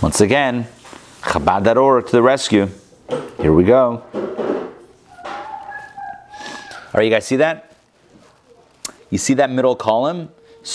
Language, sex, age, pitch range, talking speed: English, male, 30-49, 100-125 Hz, 110 wpm